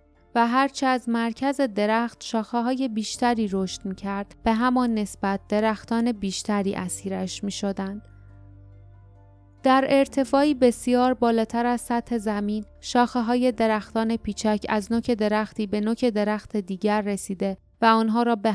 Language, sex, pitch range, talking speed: Persian, female, 200-235 Hz, 135 wpm